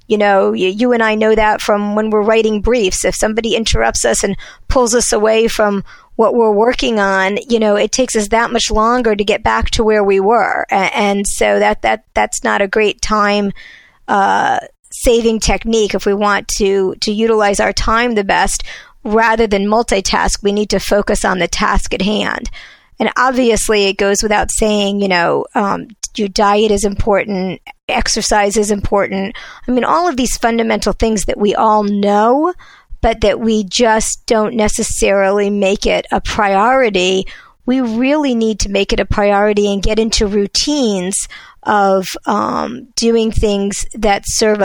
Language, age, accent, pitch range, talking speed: English, 50-69, American, 200-225 Hz, 175 wpm